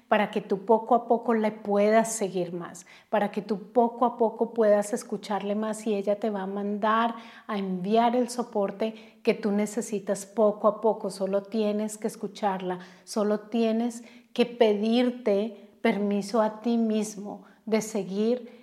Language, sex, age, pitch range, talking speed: Spanish, female, 30-49, 195-220 Hz, 160 wpm